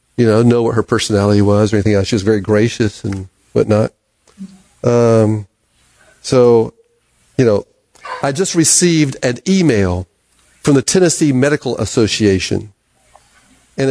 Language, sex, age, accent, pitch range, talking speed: English, male, 50-69, American, 115-155 Hz, 135 wpm